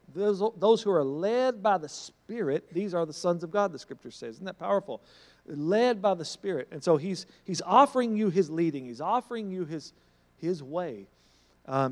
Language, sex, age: English, male, 50-69